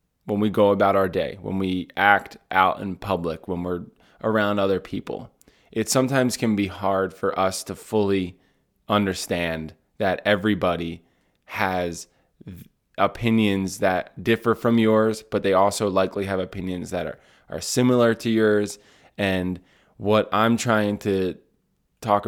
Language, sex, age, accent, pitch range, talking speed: English, male, 20-39, American, 95-110 Hz, 145 wpm